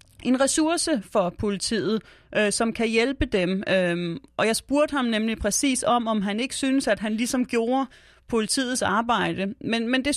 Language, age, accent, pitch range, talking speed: Danish, 30-49, native, 200-250 Hz, 165 wpm